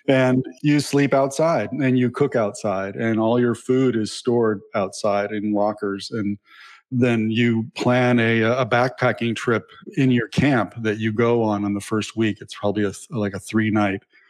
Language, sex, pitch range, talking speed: English, male, 105-120 Hz, 170 wpm